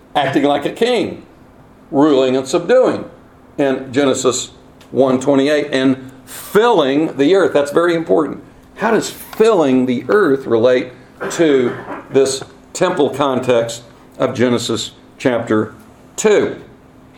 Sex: male